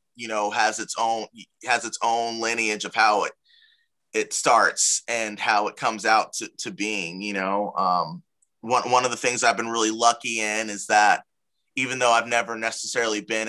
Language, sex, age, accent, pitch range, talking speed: English, male, 20-39, American, 105-120 Hz, 190 wpm